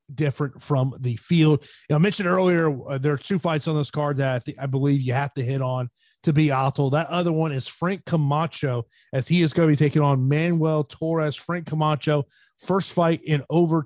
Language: English